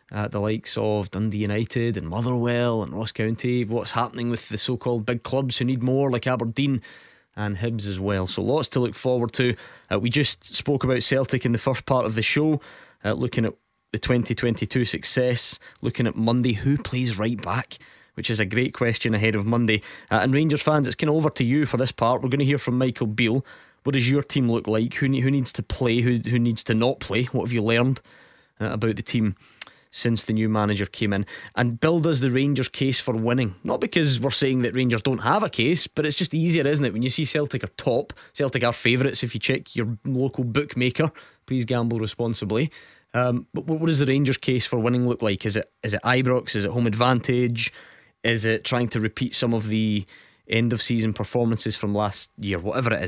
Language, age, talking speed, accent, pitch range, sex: English, 20-39, 225 wpm, British, 110-130 Hz, male